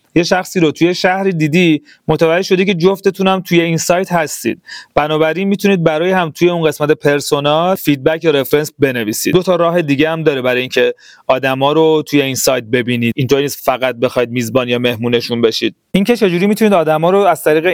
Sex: male